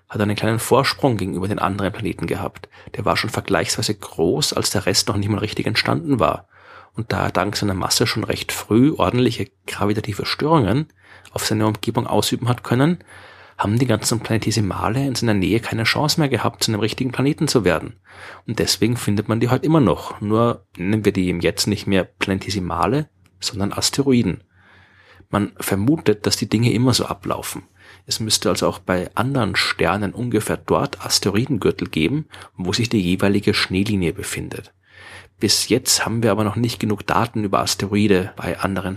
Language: German